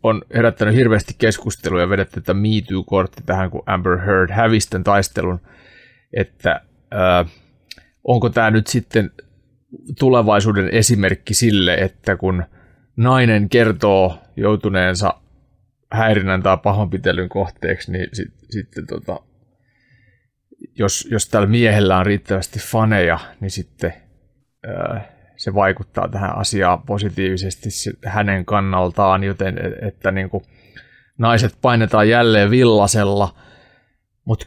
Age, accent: 30-49, native